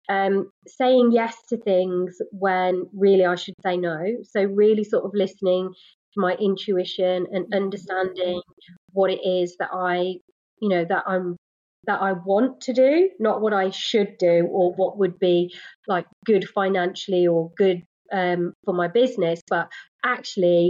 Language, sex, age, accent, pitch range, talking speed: English, female, 30-49, British, 180-210 Hz, 160 wpm